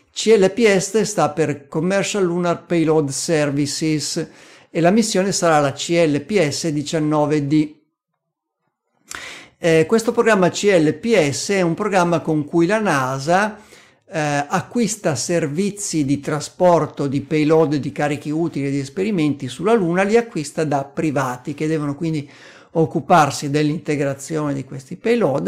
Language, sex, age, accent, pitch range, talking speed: Italian, male, 50-69, native, 150-185 Hz, 120 wpm